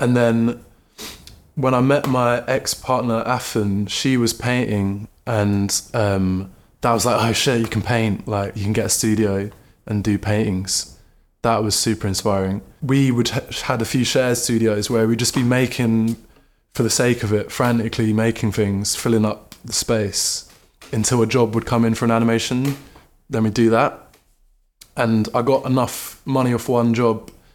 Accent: British